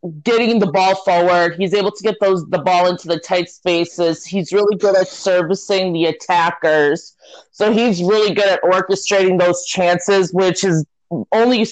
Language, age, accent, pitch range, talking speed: English, 20-39, American, 175-195 Hz, 170 wpm